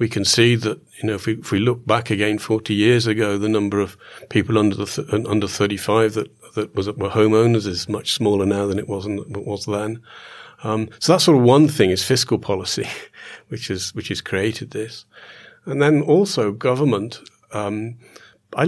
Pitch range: 100-120 Hz